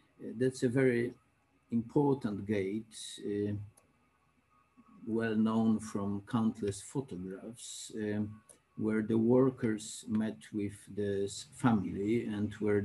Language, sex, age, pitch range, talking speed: Polish, male, 50-69, 100-125 Hz, 100 wpm